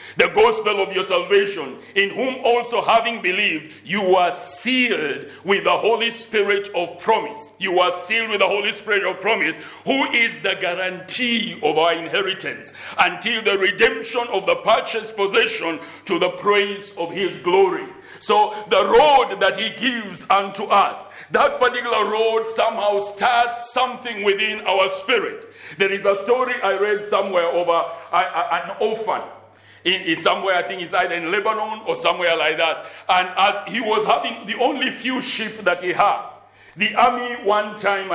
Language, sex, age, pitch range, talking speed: English, male, 60-79, 180-230 Hz, 165 wpm